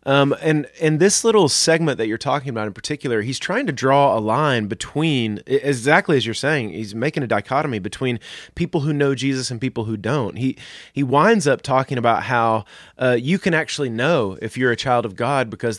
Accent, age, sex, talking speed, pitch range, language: American, 30-49, male, 210 wpm, 115-150 Hz, English